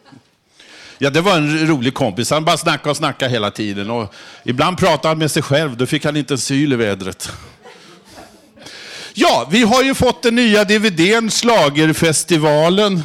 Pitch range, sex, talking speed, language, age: 135-185 Hz, male, 165 wpm, Swedish, 50-69